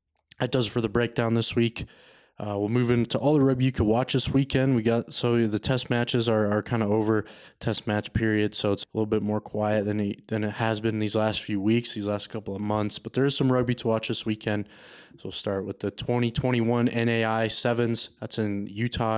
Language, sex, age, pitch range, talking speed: English, male, 20-39, 105-115 Hz, 240 wpm